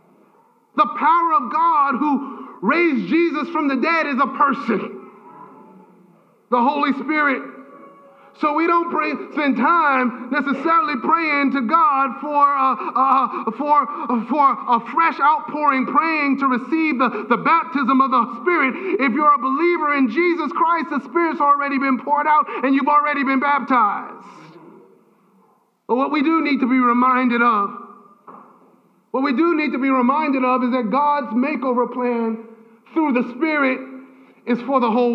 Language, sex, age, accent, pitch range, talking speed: English, male, 40-59, American, 200-290 Hz, 150 wpm